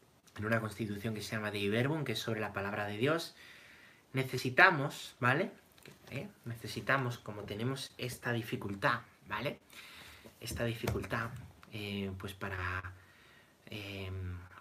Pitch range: 100-125 Hz